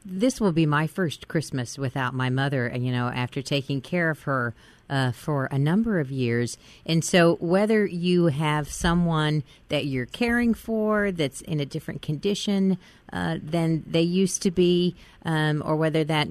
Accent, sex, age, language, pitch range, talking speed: American, female, 40-59, English, 135-175 Hz, 175 wpm